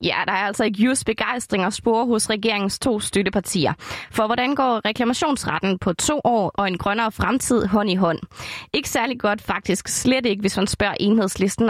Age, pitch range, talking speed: 20-39, 210-260 Hz, 190 wpm